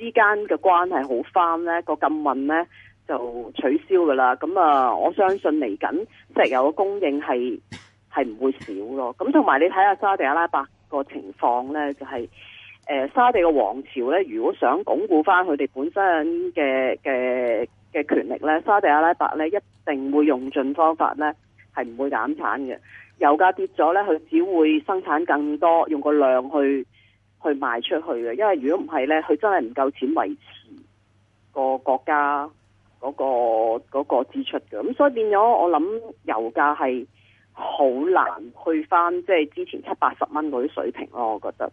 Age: 30-49